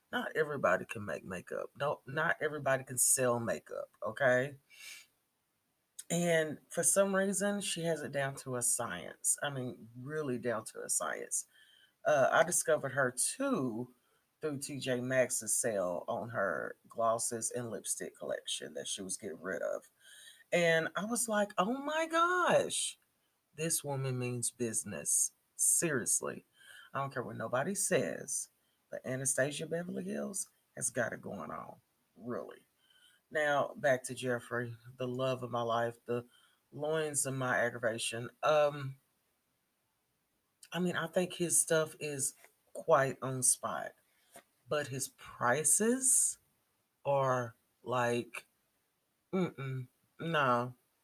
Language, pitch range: English, 125-170 Hz